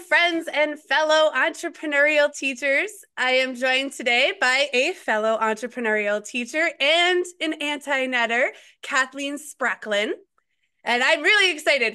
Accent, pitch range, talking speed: American, 240-310 Hz, 115 wpm